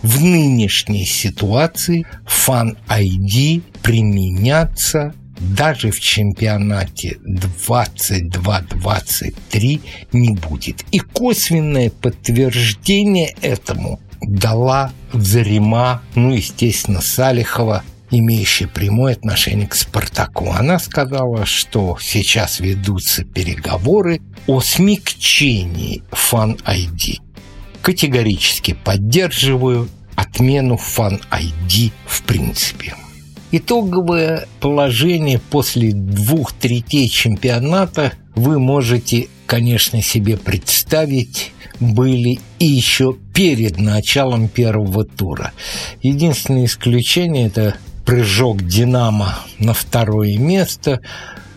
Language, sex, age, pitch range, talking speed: Russian, male, 60-79, 100-130 Hz, 80 wpm